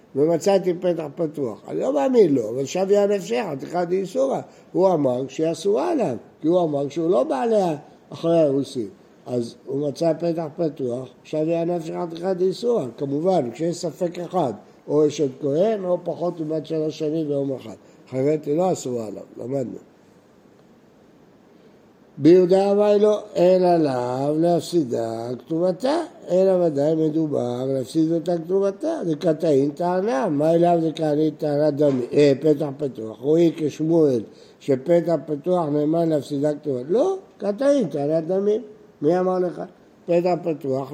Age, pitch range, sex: 60-79, 145-185 Hz, male